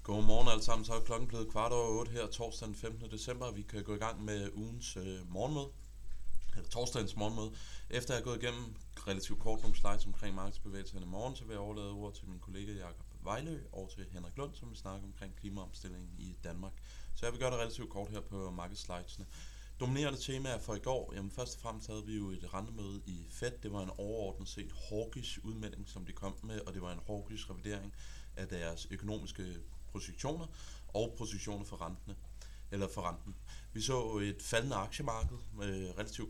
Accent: native